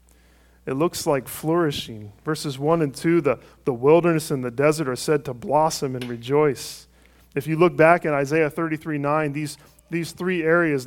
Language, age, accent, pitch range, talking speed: English, 40-59, American, 130-165 Hz, 175 wpm